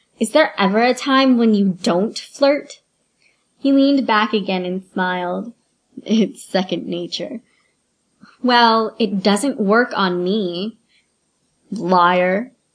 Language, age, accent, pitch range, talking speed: English, 20-39, American, 190-245 Hz, 120 wpm